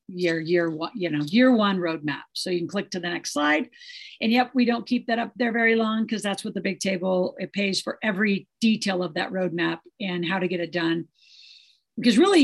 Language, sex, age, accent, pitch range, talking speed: English, female, 50-69, American, 180-215 Hz, 235 wpm